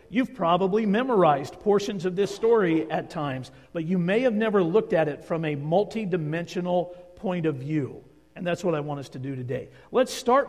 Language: English